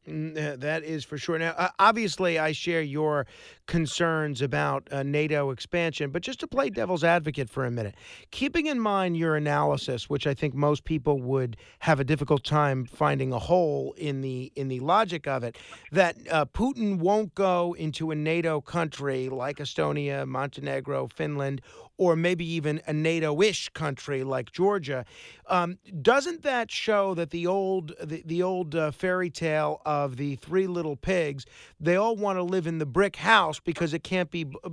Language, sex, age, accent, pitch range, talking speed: English, male, 40-59, American, 145-195 Hz, 175 wpm